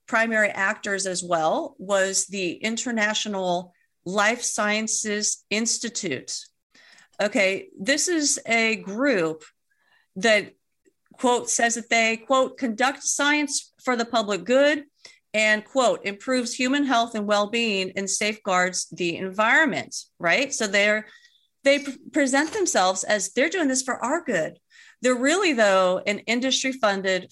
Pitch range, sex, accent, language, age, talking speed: 190-255 Hz, female, American, English, 40-59, 125 wpm